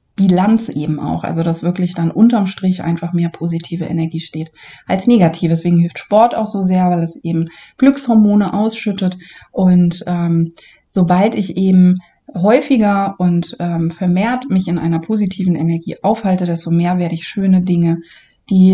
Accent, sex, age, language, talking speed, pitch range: German, female, 30-49, German, 155 wpm, 175-200 Hz